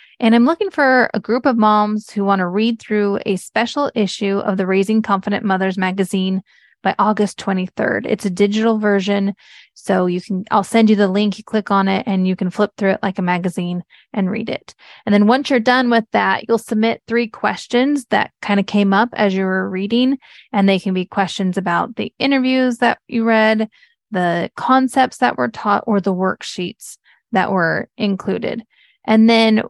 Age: 20-39